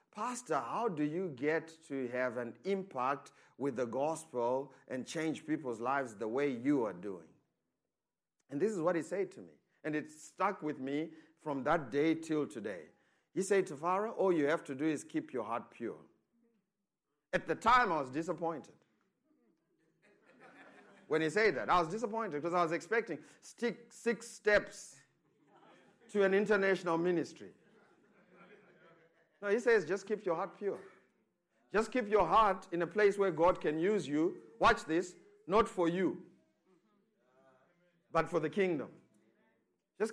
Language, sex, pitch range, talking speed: English, male, 160-215 Hz, 160 wpm